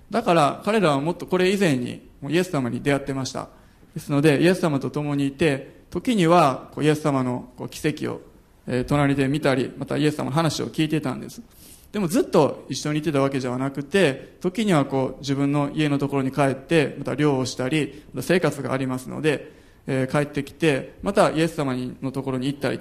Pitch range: 130-165 Hz